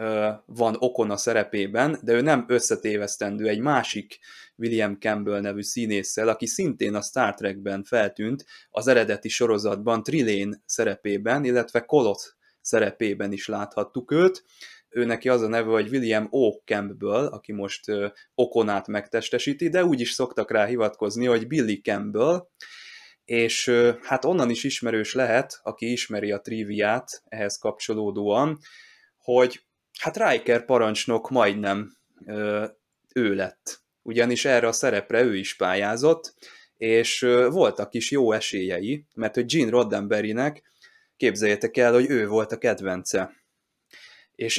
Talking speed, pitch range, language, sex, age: 130 wpm, 105-125 Hz, Hungarian, male, 20-39